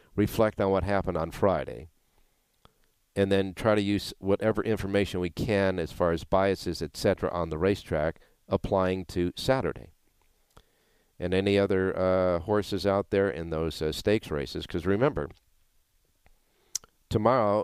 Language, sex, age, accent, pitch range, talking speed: English, male, 50-69, American, 80-100 Hz, 145 wpm